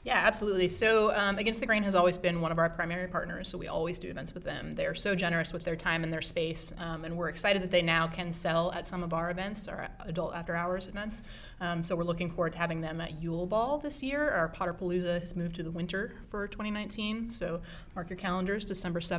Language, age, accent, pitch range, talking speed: English, 20-39, American, 170-195 Hz, 240 wpm